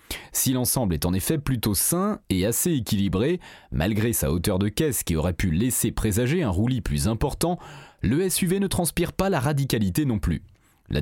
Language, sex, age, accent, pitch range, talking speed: French, male, 30-49, French, 105-165 Hz, 185 wpm